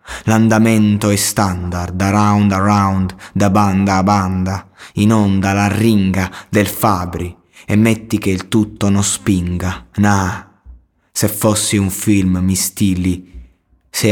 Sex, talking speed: male, 130 wpm